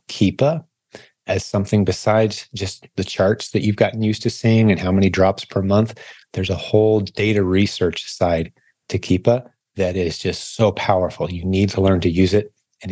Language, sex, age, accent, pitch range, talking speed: English, male, 30-49, American, 95-110 Hz, 185 wpm